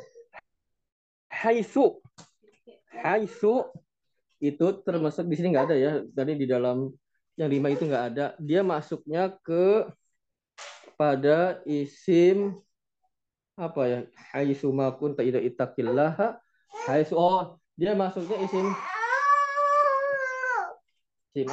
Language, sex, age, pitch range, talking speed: Indonesian, male, 20-39, 135-215 Hz, 90 wpm